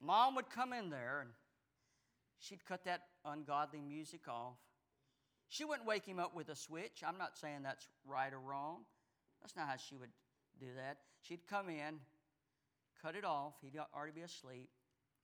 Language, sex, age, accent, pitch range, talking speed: English, male, 50-69, American, 135-160 Hz, 175 wpm